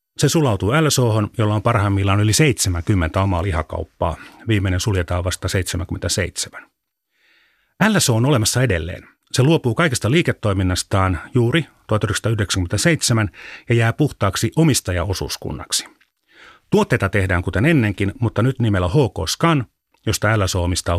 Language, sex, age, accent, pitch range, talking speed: Finnish, male, 30-49, native, 95-130 Hz, 110 wpm